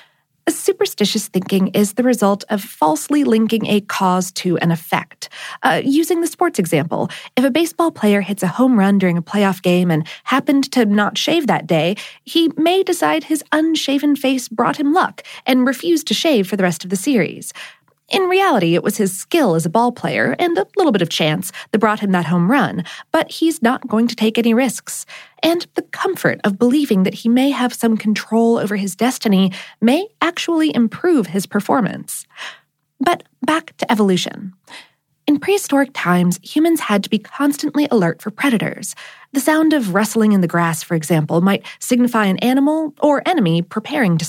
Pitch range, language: 195-300 Hz, English